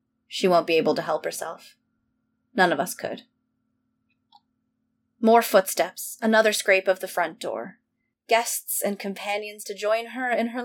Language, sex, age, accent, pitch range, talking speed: English, female, 20-39, American, 180-225 Hz, 150 wpm